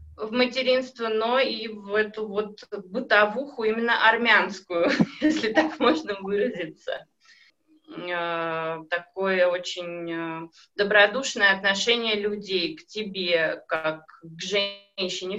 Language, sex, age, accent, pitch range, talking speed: Russian, female, 20-39, native, 185-225 Hz, 95 wpm